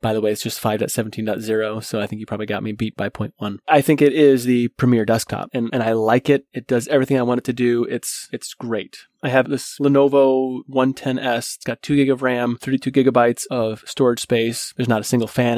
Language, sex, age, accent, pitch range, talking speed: English, male, 30-49, American, 115-130 Hz, 230 wpm